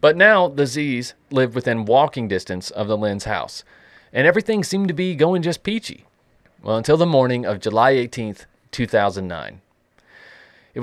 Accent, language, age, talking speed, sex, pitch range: American, English, 30-49, 160 wpm, male, 105-150 Hz